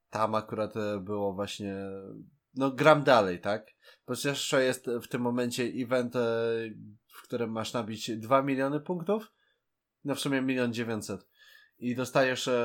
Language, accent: Polish, native